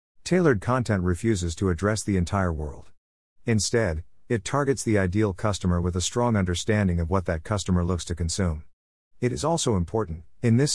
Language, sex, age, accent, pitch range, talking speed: English, male, 50-69, American, 85-115 Hz, 175 wpm